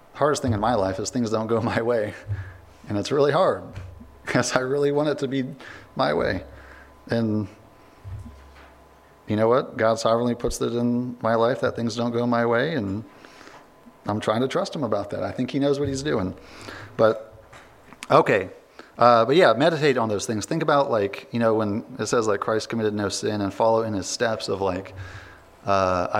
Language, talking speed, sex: English, 195 wpm, male